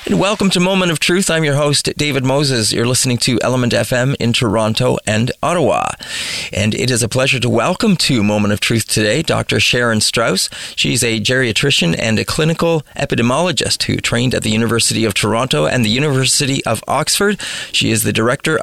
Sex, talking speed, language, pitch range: male, 185 wpm, English, 115-140 Hz